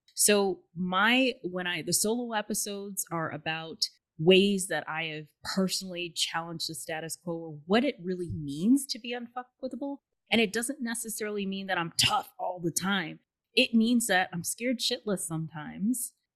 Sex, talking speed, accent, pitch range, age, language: female, 160 wpm, American, 160-200 Hz, 20-39, English